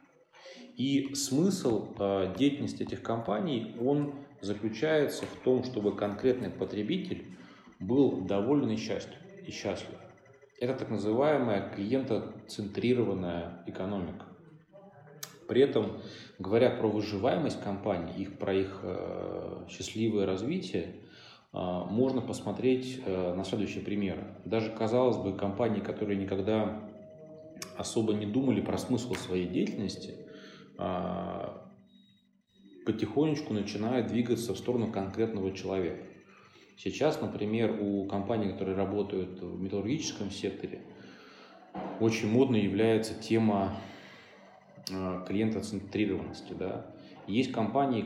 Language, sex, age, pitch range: Russian, male, 30-49, 95-120 Hz